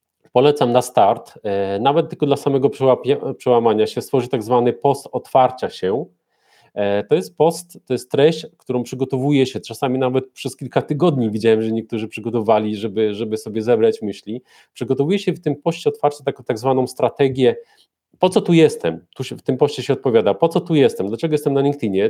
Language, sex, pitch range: Polish, male, 120-145 Hz